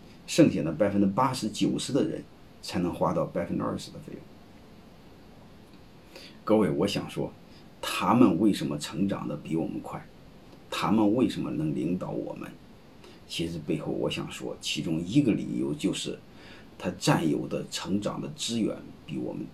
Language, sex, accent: Chinese, male, native